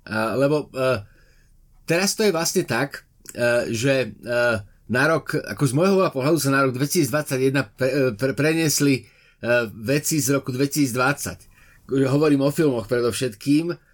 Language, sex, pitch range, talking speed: Slovak, male, 115-145 Hz, 125 wpm